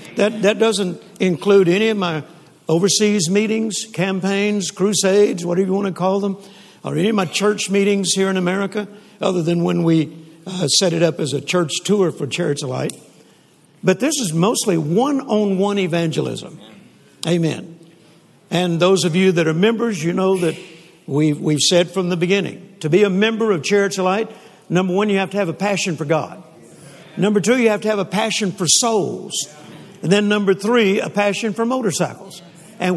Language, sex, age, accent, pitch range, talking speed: English, male, 60-79, American, 165-200 Hz, 180 wpm